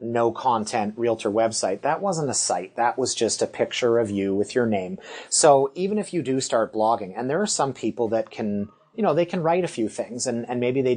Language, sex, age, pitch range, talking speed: English, male, 30-49, 120-160 Hz, 240 wpm